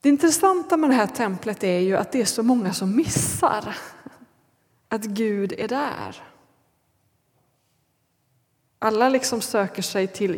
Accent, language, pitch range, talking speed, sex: native, Swedish, 195-240 Hz, 140 wpm, female